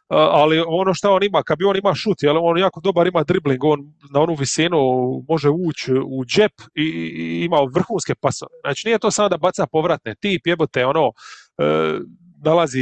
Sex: male